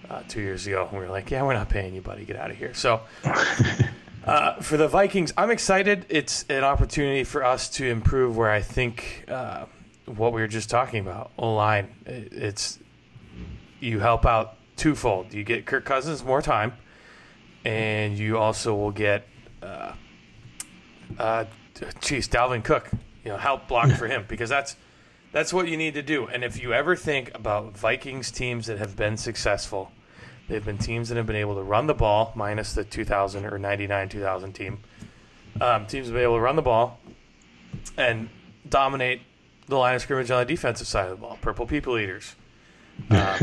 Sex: male